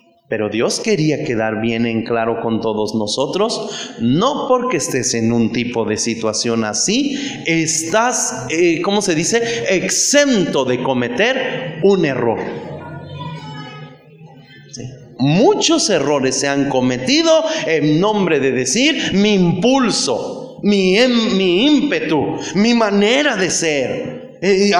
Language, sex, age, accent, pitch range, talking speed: Spanish, male, 30-49, Mexican, 140-210 Hz, 115 wpm